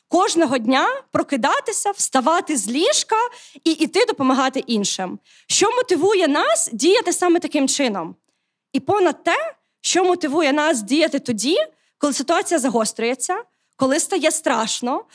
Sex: female